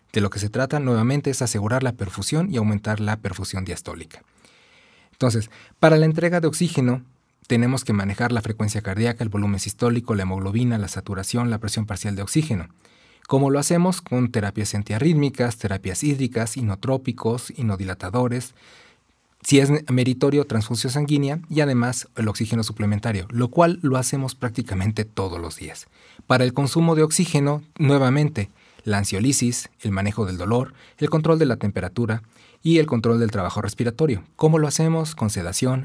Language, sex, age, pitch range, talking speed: Spanish, male, 40-59, 105-135 Hz, 160 wpm